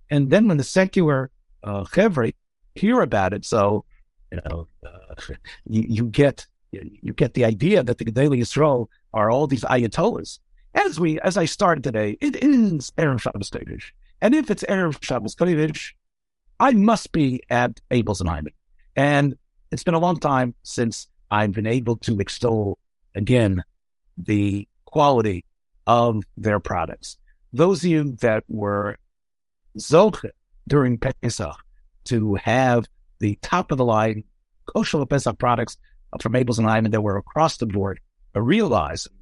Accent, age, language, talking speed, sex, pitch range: American, 60-79, English, 145 wpm, male, 100-135 Hz